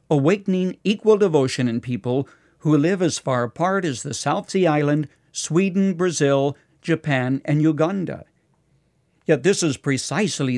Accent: American